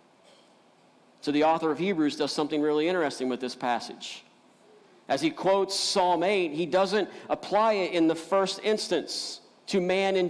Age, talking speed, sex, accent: 50-69, 165 wpm, male, American